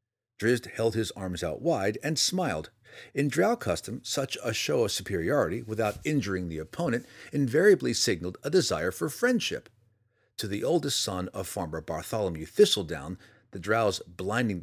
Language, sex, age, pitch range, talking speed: English, male, 50-69, 95-120 Hz, 150 wpm